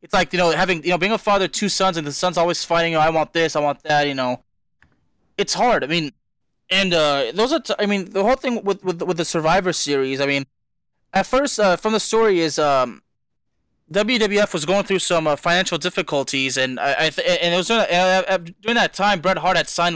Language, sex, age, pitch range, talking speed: English, male, 20-39, 145-185 Hz, 245 wpm